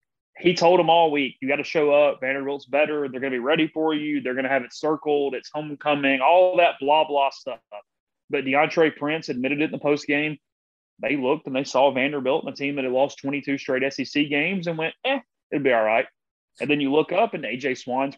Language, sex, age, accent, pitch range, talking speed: English, male, 30-49, American, 135-160 Hz, 235 wpm